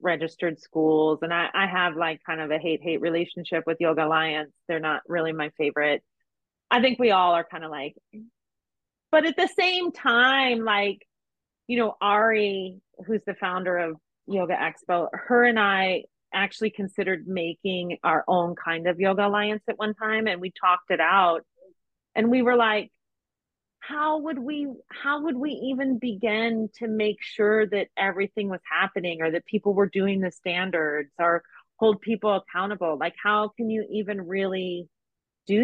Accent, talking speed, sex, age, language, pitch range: American, 170 wpm, female, 30-49, English, 170-220 Hz